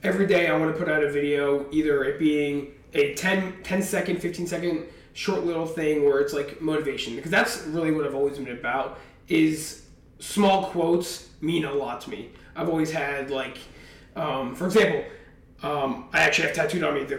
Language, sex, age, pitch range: English, male, 20-39, 145-180 Hz